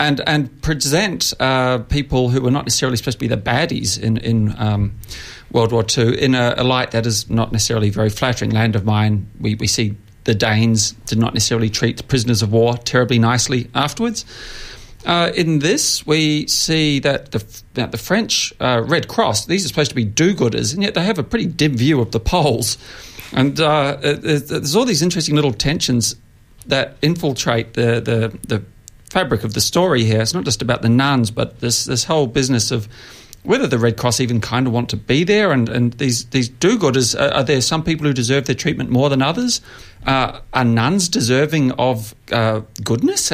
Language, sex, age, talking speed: English, male, 40-59, 200 wpm